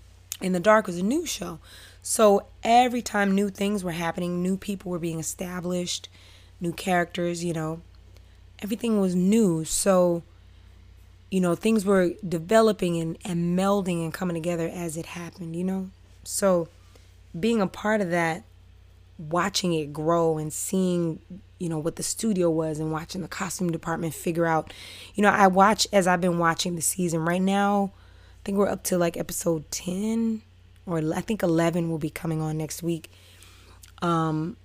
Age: 20-39